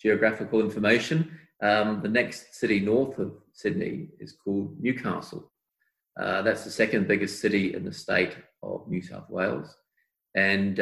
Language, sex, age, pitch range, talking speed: English, male, 40-59, 100-125 Hz, 145 wpm